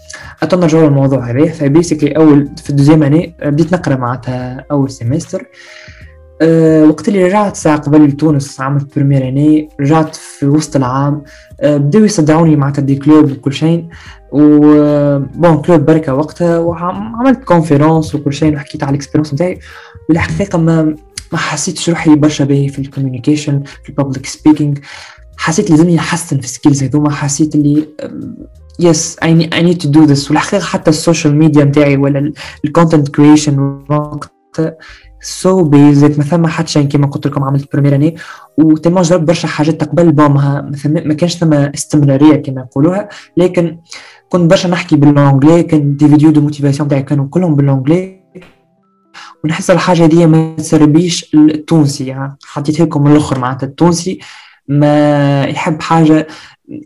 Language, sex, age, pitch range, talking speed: English, male, 20-39, 145-165 Hz, 110 wpm